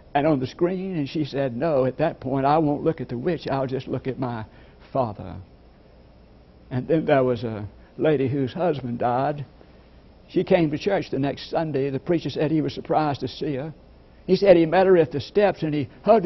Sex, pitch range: male, 115-160 Hz